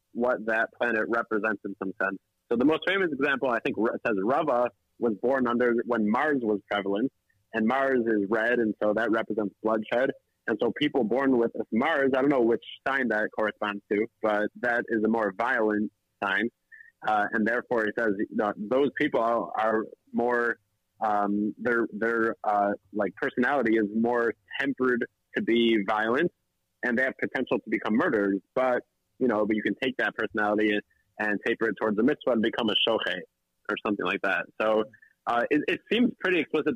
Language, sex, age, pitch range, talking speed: English, male, 30-49, 105-125 Hz, 185 wpm